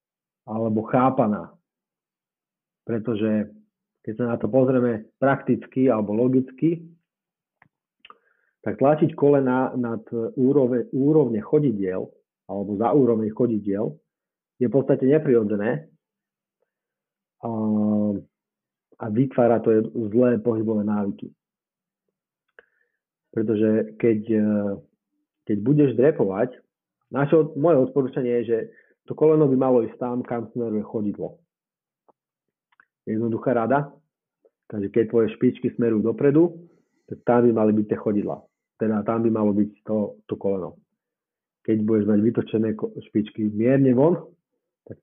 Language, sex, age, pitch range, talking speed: Slovak, male, 40-59, 110-140 Hz, 110 wpm